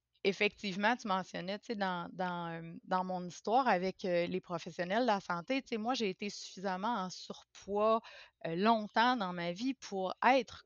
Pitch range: 175-210 Hz